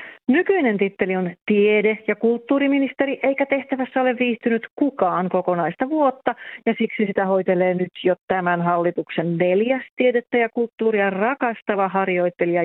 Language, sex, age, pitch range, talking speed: Finnish, female, 40-59, 180-250 Hz, 130 wpm